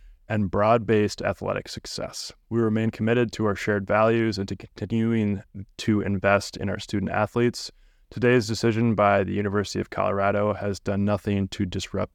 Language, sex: English, male